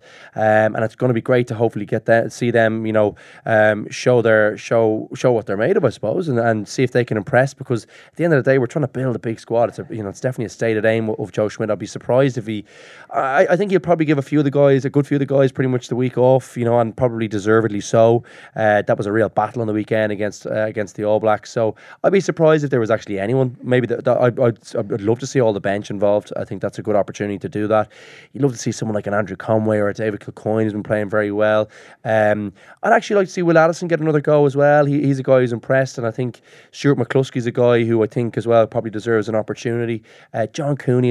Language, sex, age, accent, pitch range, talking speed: English, male, 20-39, Irish, 105-130 Hz, 280 wpm